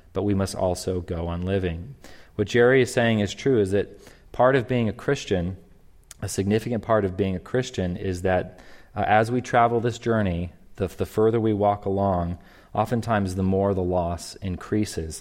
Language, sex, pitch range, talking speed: English, male, 95-110 Hz, 185 wpm